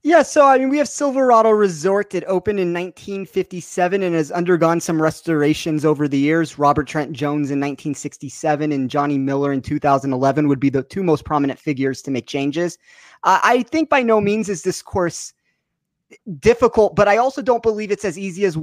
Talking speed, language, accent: 190 wpm, English, American